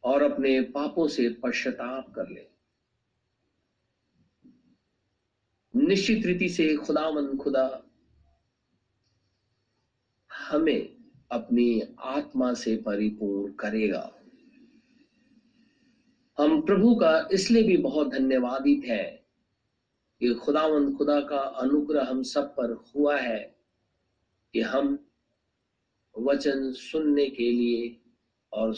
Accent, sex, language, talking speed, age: native, male, Hindi, 90 wpm, 50-69